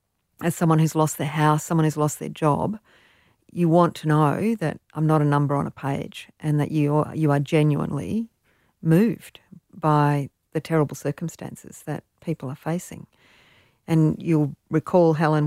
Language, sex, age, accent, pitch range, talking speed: English, female, 50-69, Australian, 145-165 Hz, 165 wpm